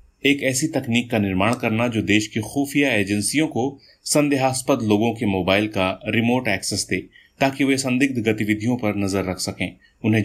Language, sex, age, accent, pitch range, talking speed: Hindi, male, 30-49, native, 100-130 Hz, 170 wpm